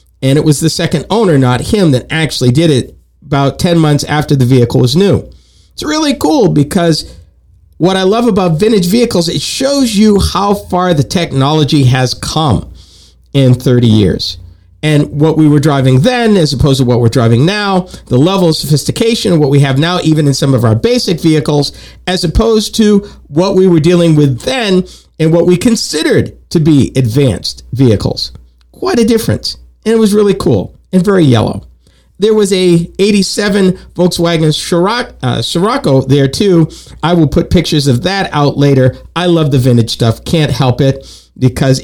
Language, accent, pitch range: English, American, 125-180 Hz